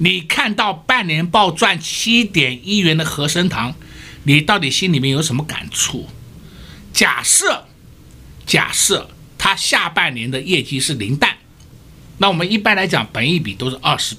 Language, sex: Chinese, male